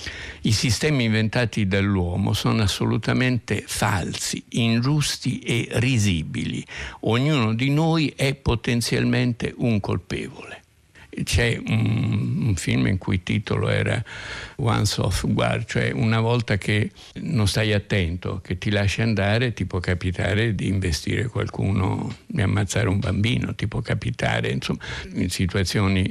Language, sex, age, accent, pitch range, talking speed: Italian, male, 60-79, native, 95-120 Hz, 130 wpm